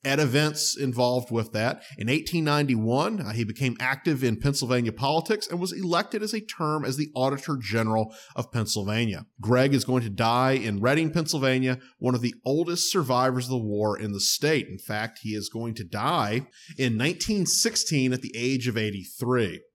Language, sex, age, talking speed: English, male, 30-49, 180 wpm